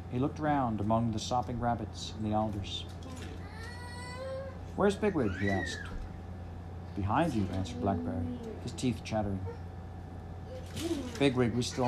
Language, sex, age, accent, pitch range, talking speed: English, male, 50-69, American, 90-115 Hz, 120 wpm